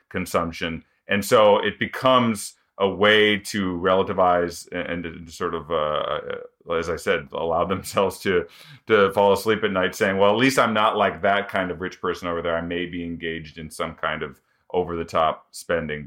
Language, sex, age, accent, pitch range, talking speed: English, male, 30-49, American, 90-110 Hz, 185 wpm